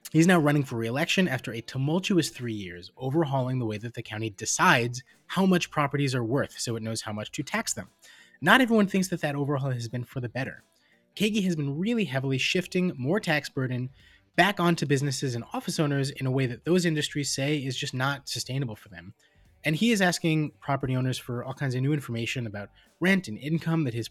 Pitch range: 115-165 Hz